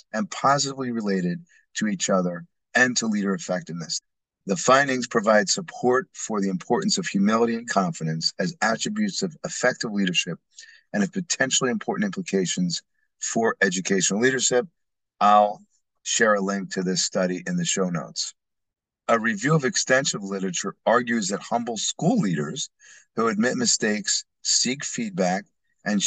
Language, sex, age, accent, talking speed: English, male, 40-59, American, 140 wpm